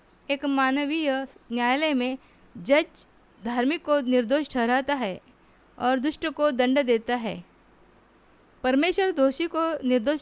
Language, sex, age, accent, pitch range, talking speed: Hindi, female, 50-69, native, 245-315 Hz, 115 wpm